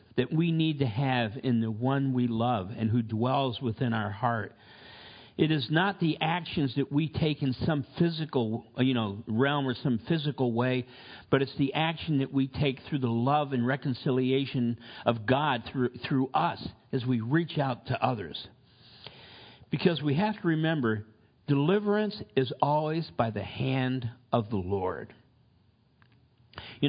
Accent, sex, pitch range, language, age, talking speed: American, male, 120-155 Hz, English, 50-69, 160 wpm